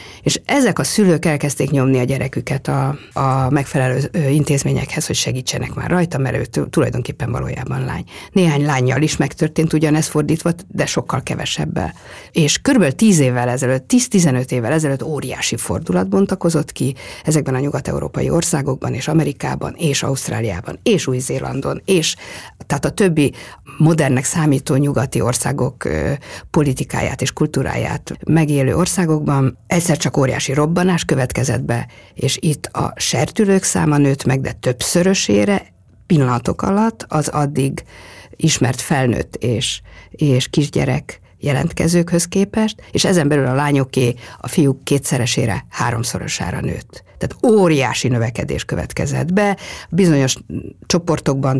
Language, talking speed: Hungarian, 125 wpm